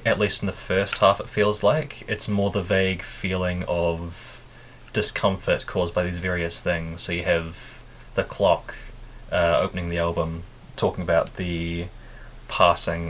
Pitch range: 85-105 Hz